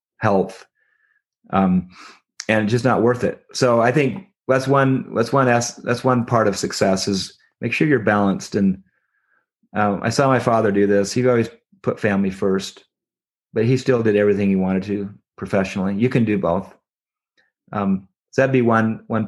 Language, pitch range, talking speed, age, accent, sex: English, 100-120 Hz, 180 wpm, 30-49, American, male